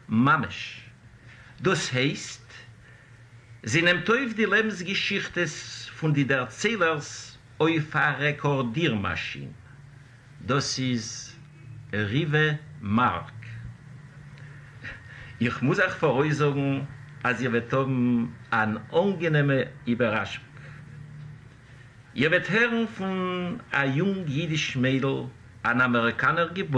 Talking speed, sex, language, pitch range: 85 wpm, male, English, 120-155 Hz